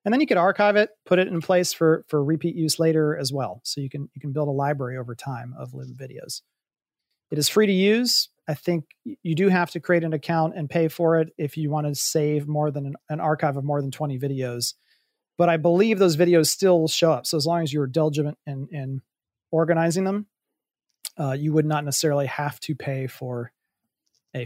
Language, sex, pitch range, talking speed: English, male, 145-170 Hz, 225 wpm